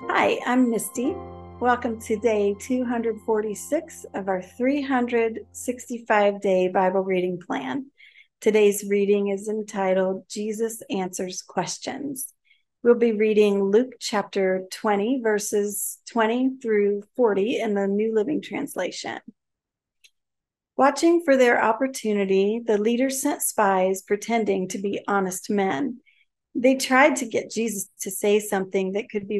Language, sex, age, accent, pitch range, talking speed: English, female, 40-59, American, 195-250 Hz, 120 wpm